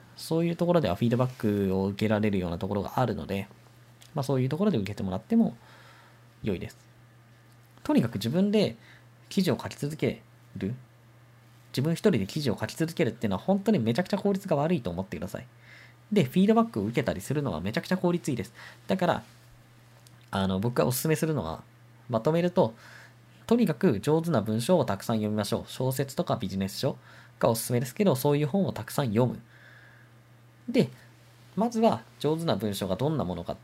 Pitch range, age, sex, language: 115-175 Hz, 20-39, male, Japanese